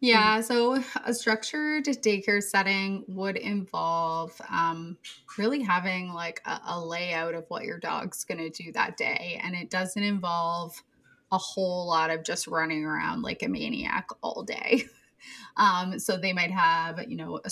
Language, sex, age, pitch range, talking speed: English, female, 20-39, 170-215 Hz, 165 wpm